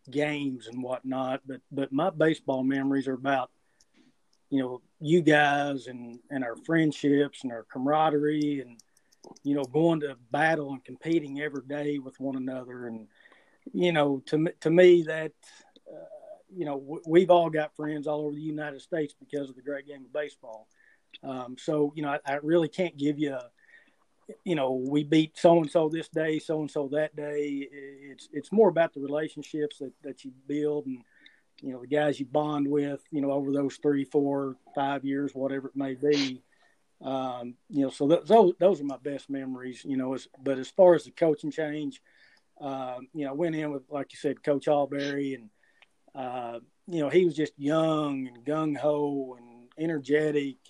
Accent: American